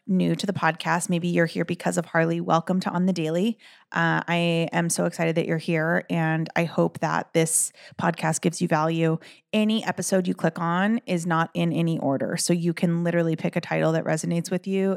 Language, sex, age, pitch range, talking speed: English, female, 30-49, 160-195 Hz, 215 wpm